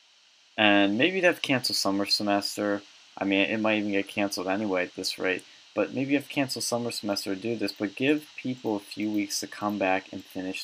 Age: 20-39